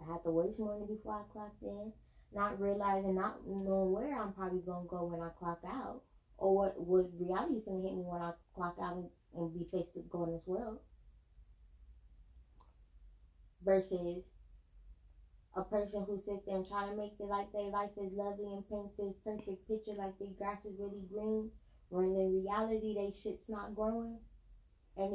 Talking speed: 190 wpm